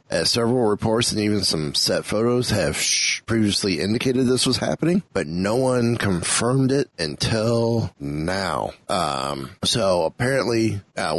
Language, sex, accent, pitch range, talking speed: English, male, American, 95-120 Hz, 140 wpm